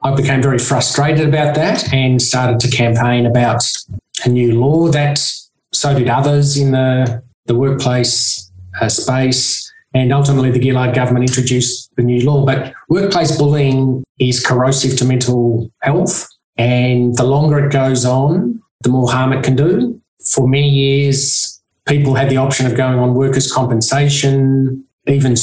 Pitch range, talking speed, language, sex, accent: 125-140 Hz, 155 wpm, English, male, Australian